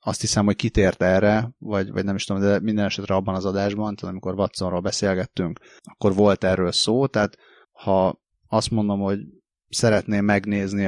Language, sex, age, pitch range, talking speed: Hungarian, male, 30-49, 95-115 Hz, 170 wpm